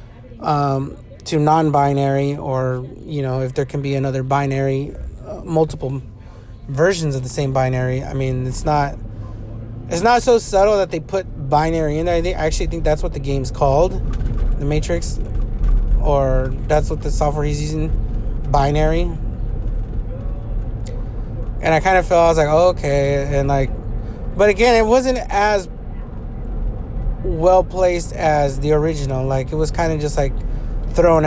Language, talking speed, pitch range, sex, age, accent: English, 155 wpm, 125-160 Hz, male, 30-49, American